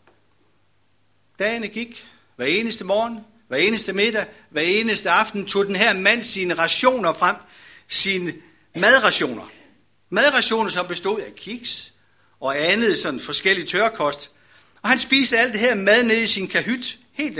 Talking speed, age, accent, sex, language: 145 wpm, 60-79, native, male, Danish